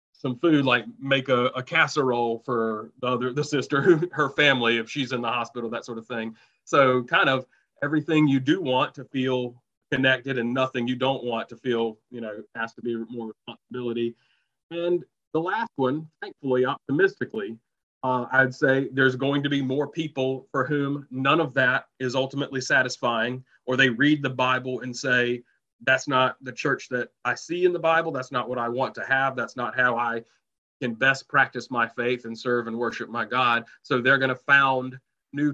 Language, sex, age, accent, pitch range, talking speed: English, male, 30-49, American, 120-140 Hz, 195 wpm